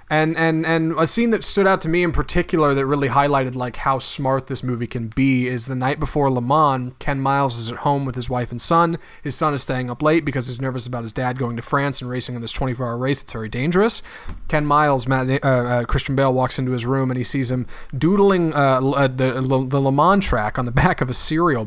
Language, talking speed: English, 250 wpm